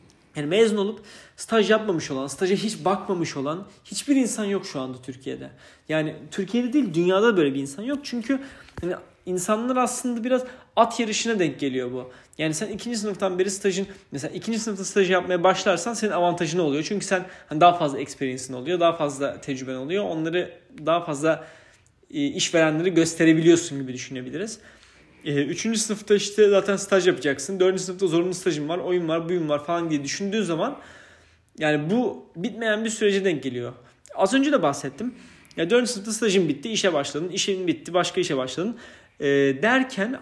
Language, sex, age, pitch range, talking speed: Turkish, male, 30-49, 150-210 Hz, 165 wpm